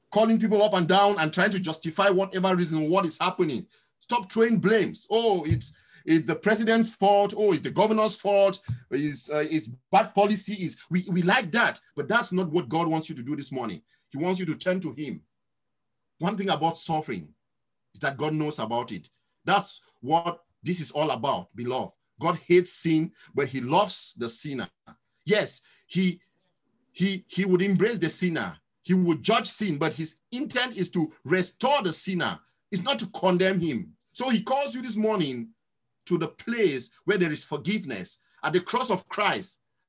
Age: 50-69